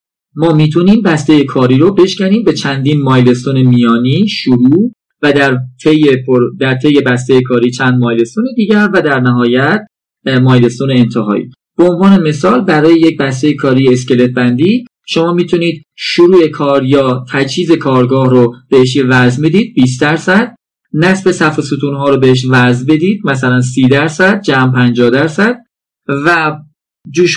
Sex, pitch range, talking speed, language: male, 130-180 Hz, 135 wpm, Persian